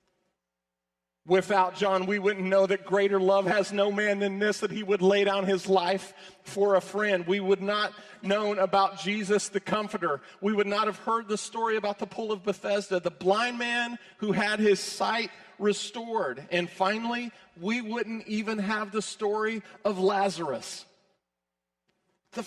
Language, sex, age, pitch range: English, male, 40-59, 155-210 Hz